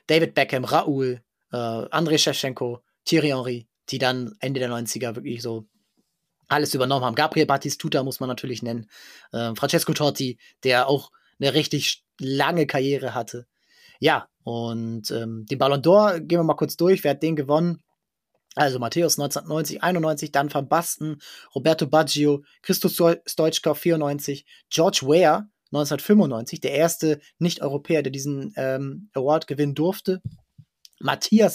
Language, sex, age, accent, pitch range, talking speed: German, male, 20-39, German, 130-155 Hz, 145 wpm